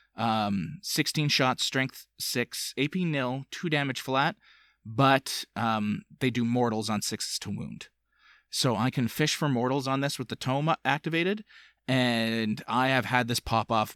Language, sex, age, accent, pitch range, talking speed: English, male, 30-49, American, 110-135 Hz, 165 wpm